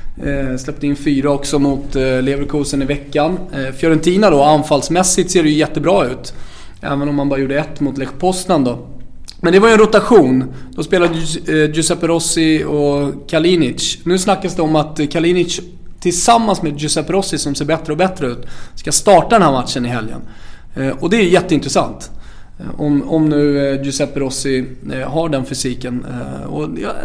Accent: Swedish